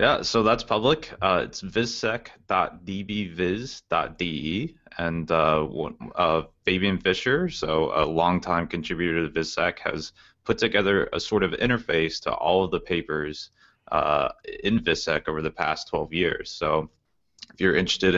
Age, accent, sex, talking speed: 20-39, American, male, 140 wpm